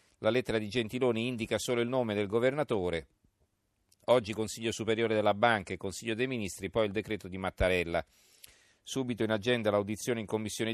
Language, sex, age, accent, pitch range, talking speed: Italian, male, 40-59, native, 90-110 Hz, 170 wpm